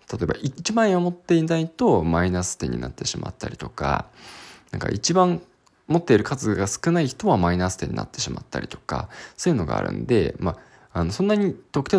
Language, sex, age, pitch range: Japanese, male, 20-39, 90-145 Hz